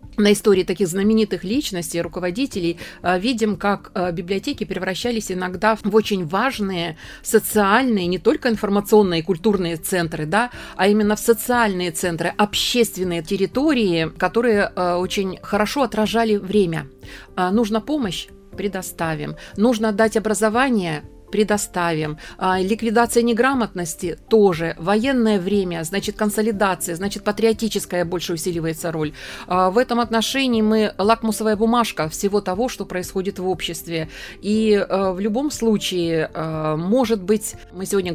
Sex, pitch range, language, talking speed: female, 175-220 Hz, Russian, 115 wpm